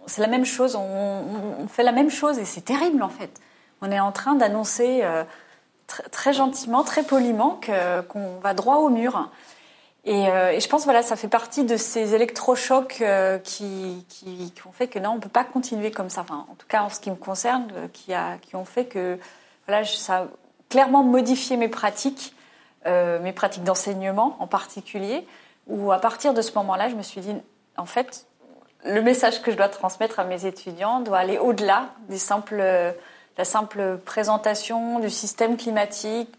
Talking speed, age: 200 wpm, 30-49